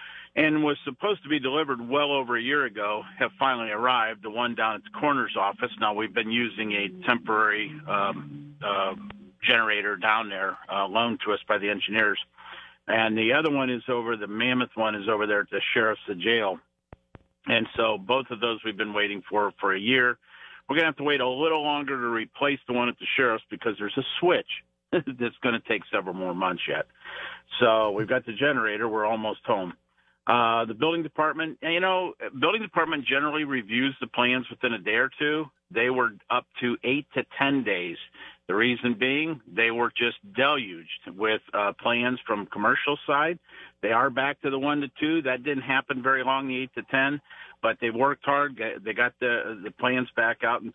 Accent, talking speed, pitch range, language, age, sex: American, 200 wpm, 115-145 Hz, English, 50-69, male